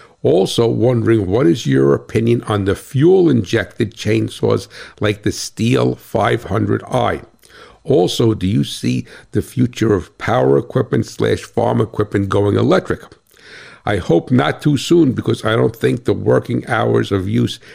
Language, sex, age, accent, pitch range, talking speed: English, male, 50-69, American, 100-125 Hz, 140 wpm